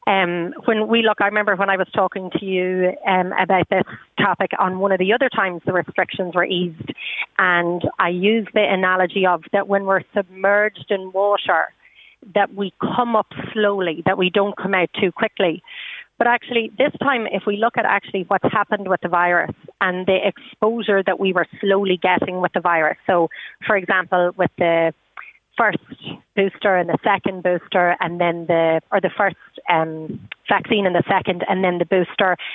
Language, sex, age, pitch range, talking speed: English, female, 30-49, 185-215 Hz, 185 wpm